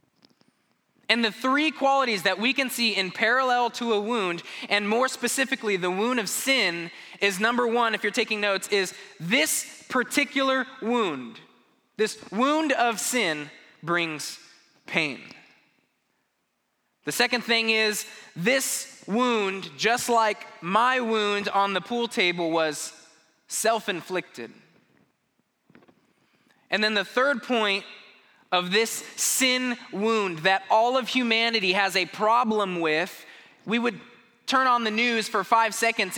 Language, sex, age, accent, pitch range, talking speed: English, male, 20-39, American, 180-240 Hz, 130 wpm